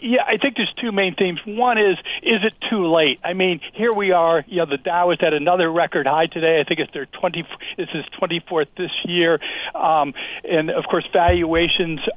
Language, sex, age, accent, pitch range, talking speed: English, male, 60-79, American, 175-210 Hz, 215 wpm